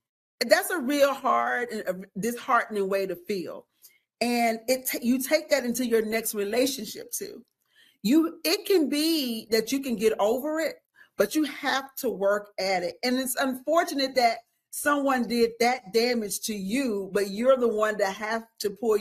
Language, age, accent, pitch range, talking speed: English, 40-59, American, 205-270 Hz, 175 wpm